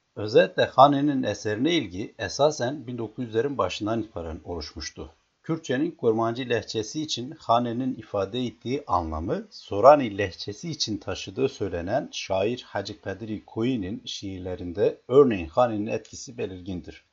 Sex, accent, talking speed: male, native, 110 wpm